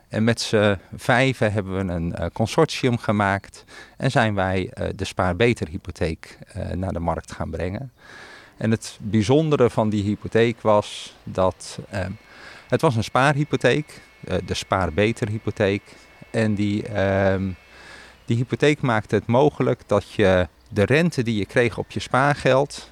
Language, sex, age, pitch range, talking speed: Dutch, male, 40-59, 100-125 Hz, 135 wpm